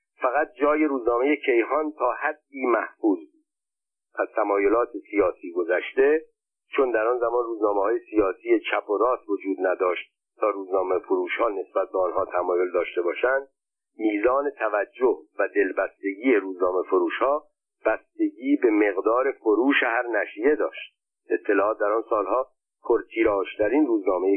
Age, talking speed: 50-69, 125 wpm